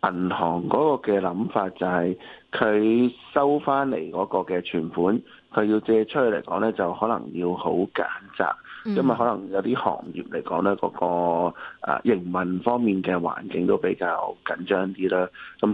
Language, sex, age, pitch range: Chinese, male, 20-39, 90-110 Hz